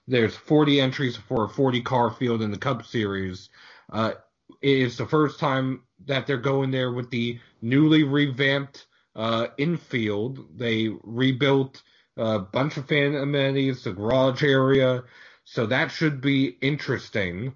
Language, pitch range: English, 115-140 Hz